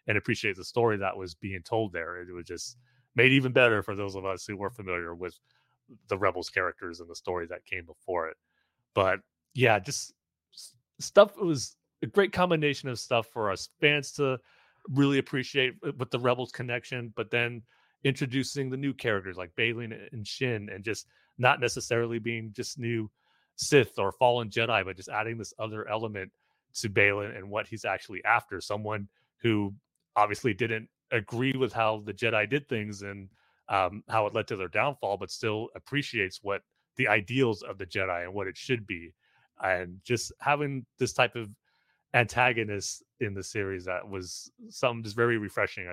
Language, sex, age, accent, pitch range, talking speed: English, male, 30-49, American, 100-125 Hz, 180 wpm